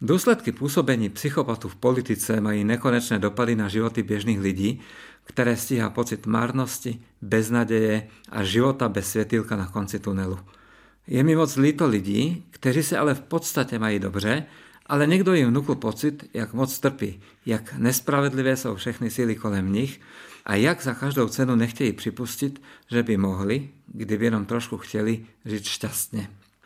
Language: Czech